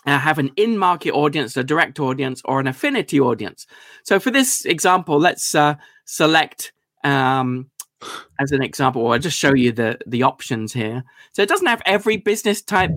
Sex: male